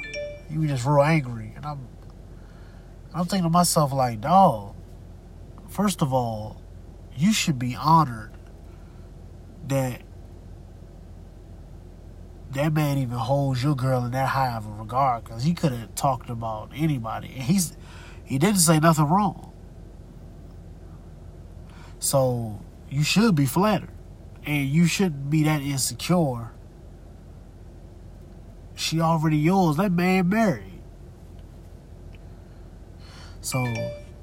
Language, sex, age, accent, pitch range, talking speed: English, male, 20-39, American, 90-140 Hz, 115 wpm